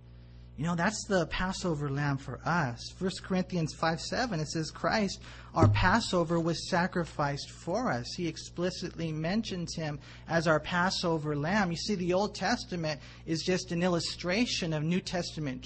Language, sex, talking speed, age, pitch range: English, male, 155 wpm, 40-59, 130-185 Hz